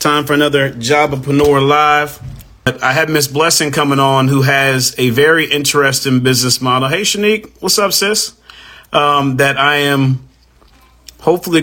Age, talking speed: 30-49, 155 wpm